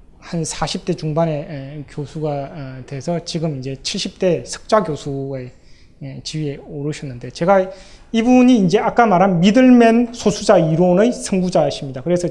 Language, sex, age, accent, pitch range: Korean, male, 20-39, native, 145-185 Hz